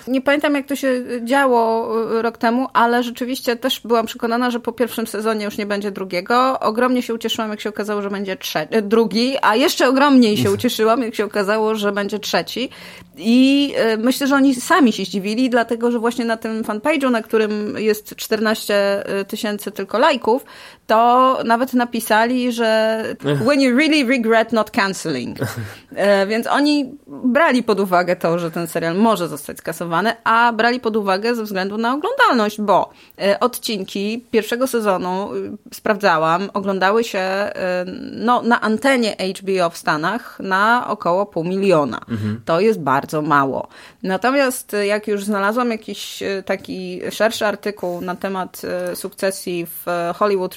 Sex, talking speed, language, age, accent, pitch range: female, 145 wpm, Polish, 30-49, native, 195-245 Hz